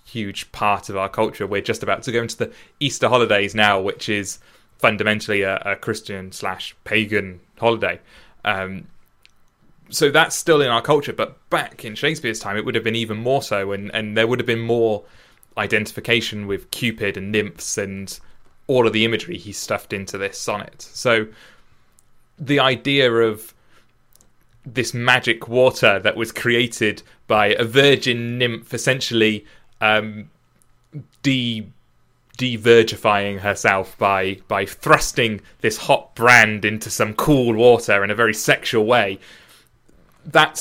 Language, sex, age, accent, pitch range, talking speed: English, male, 20-39, British, 105-125 Hz, 145 wpm